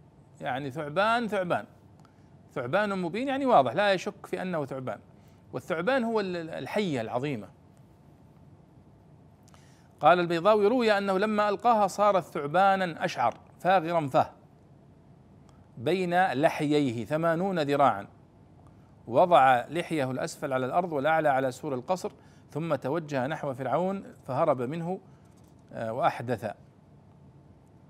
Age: 50-69